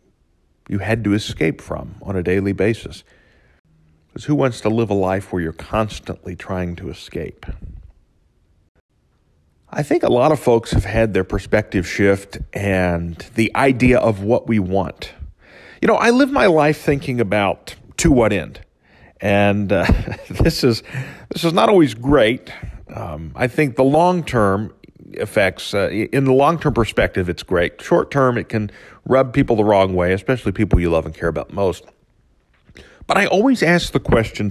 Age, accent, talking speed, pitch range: 40-59, American, 165 wpm, 90-125 Hz